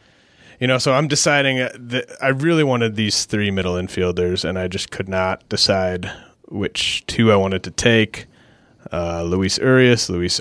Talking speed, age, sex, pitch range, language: 165 wpm, 30-49, male, 90-110 Hz, English